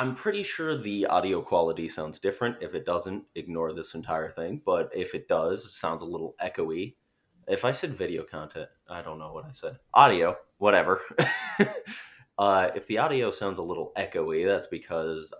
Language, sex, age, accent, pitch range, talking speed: English, male, 30-49, American, 85-130 Hz, 185 wpm